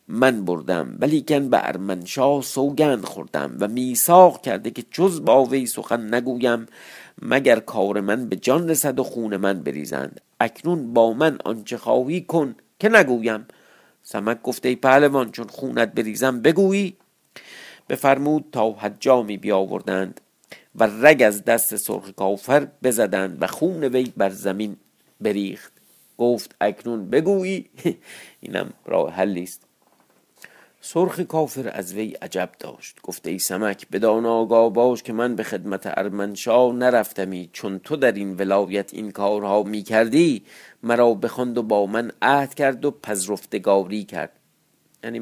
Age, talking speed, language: 50-69, 135 wpm, Persian